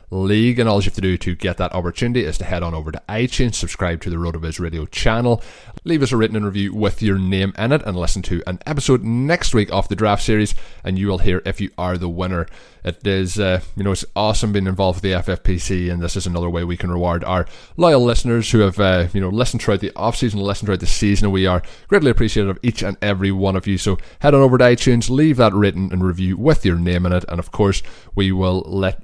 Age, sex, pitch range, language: 20-39, male, 90-115 Hz, English